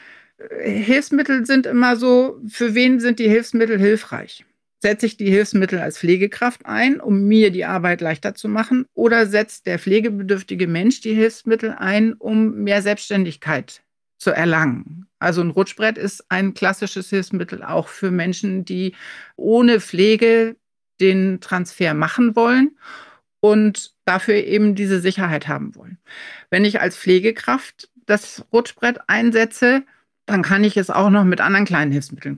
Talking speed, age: 145 wpm, 60-79